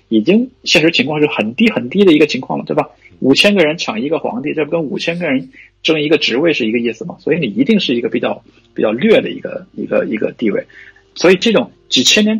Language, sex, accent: Chinese, male, native